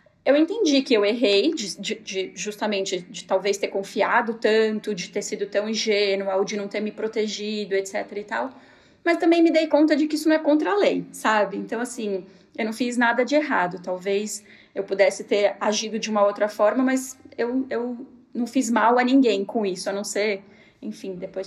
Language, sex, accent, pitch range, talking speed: Portuguese, female, Brazilian, 205-260 Hz, 200 wpm